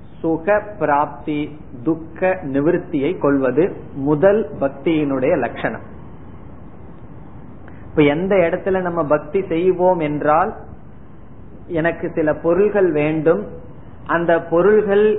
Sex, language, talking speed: male, Tamil, 75 wpm